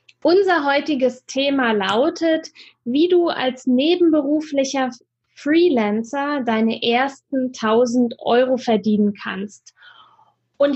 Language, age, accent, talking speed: German, 10-29, German, 90 wpm